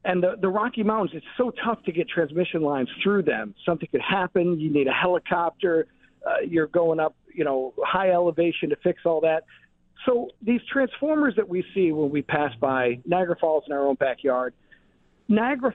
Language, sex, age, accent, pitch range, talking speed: English, male, 50-69, American, 160-215 Hz, 190 wpm